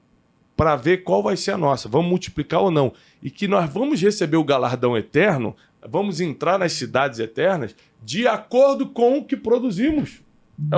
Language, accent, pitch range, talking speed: Portuguese, Brazilian, 145-200 Hz, 175 wpm